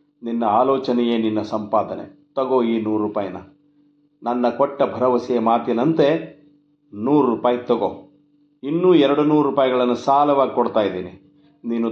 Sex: male